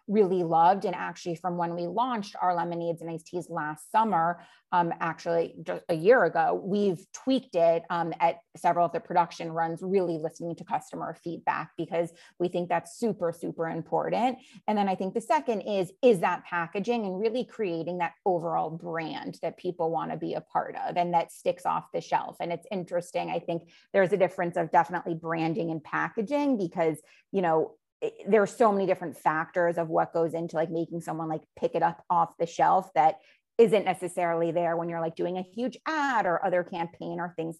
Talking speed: 200 wpm